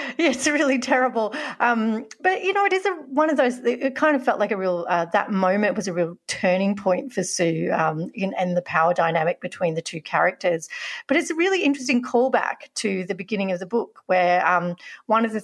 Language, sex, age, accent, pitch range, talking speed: English, female, 40-59, Australian, 175-225 Hz, 230 wpm